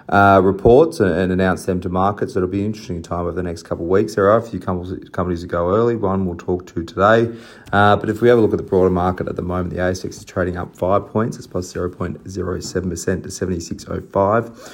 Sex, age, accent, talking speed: male, 30-49, Australian, 230 wpm